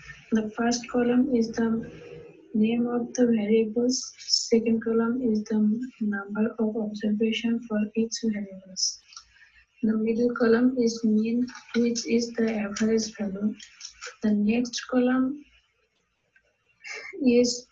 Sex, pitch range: female, 220-240 Hz